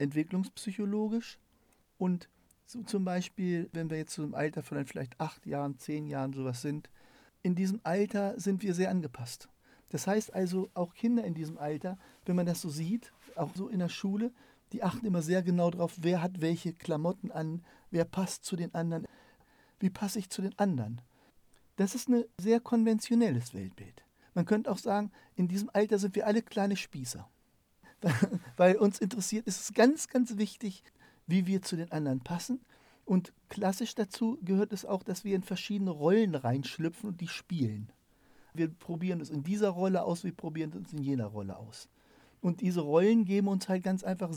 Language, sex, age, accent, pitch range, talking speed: German, male, 50-69, German, 150-200 Hz, 185 wpm